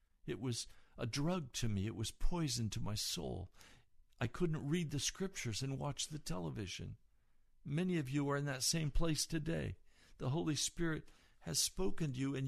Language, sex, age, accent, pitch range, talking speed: English, male, 60-79, American, 115-165 Hz, 185 wpm